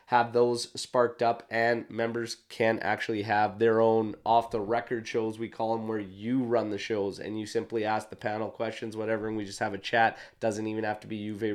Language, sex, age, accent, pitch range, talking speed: English, male, 20-39, American, 105-125 Hz, 225 wpm